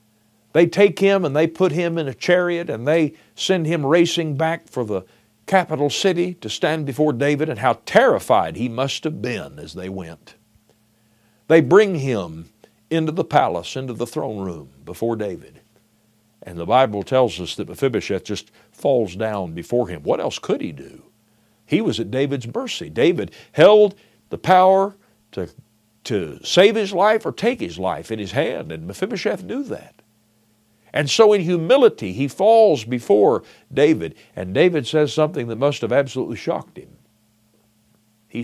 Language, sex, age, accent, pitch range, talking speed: English, male, 60-79, American, 110-160 Hz, 165 wpm